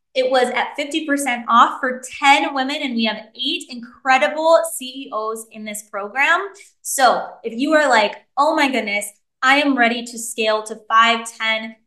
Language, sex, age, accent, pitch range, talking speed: English, female, 20-39, American, 225-280 Hz, 165 wpm